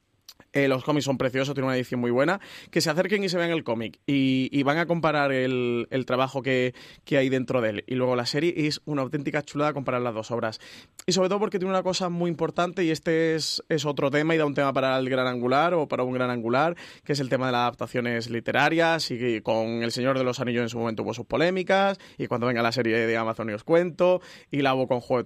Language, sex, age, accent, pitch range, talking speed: Spanish, male, 30-49, Spanish, 125-170 Hz, 260 wpm